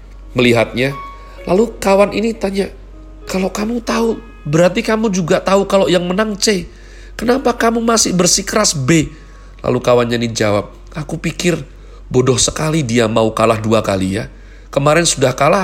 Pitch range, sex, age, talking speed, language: 110-165 Hz, male, 40-59, 145 wpm, Indonesian